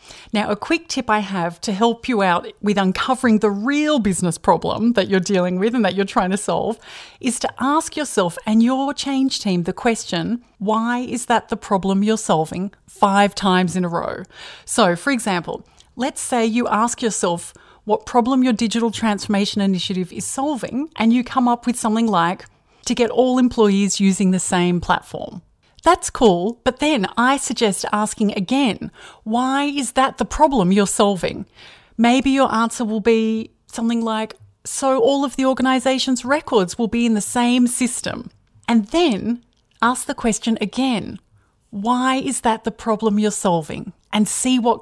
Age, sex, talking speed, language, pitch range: 30-49, female, 175 wpm, English, 200-250 Hz